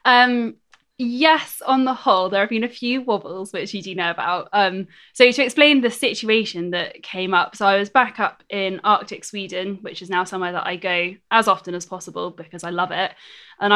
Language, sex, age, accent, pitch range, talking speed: English, female, 10-29, British, 180-215 Hz, 215 wpm